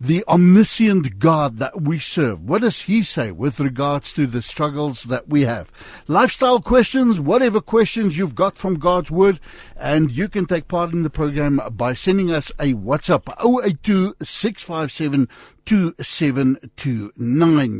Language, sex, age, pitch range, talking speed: English, male, 60-79, 135-200 Hz, 145 wpm